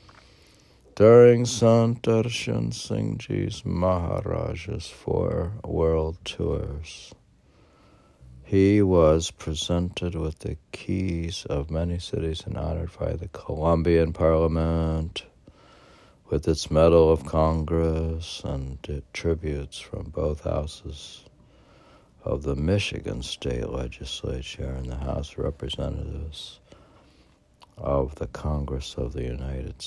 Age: 60-79